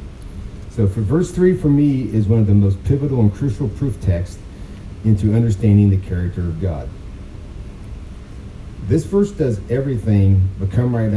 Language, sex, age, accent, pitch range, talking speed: English, male, 40-59, American, 90-110 Hz, 155 wpm